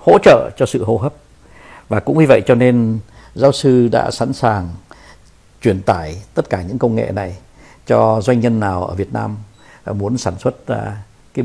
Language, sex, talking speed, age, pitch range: Vietnamese, male, 190 wpm, 60-79, 100-125 Hz